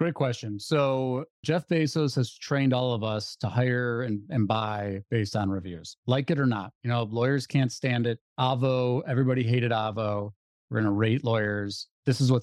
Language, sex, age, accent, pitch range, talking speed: English, male, 40-59, American, 115-145 Hz, 195 wpm